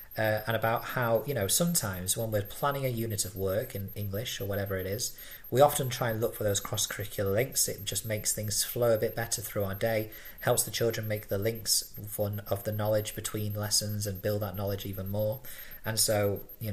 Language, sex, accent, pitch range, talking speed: English, male, British, 100-115 Hz, 220 wpm